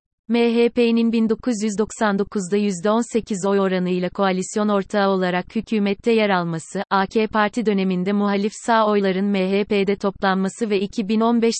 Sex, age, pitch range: female, 30-49, 190-220 Hz